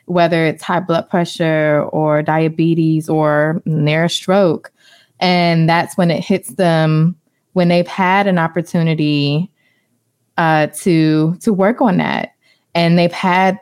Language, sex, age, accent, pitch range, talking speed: English, female, 20-39, American, 160-195 Hz, 130 wpm